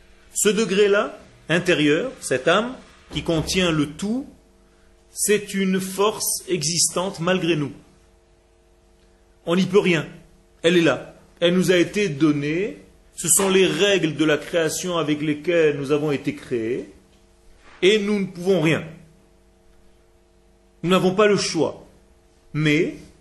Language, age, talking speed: French, 40-59, 130 wpm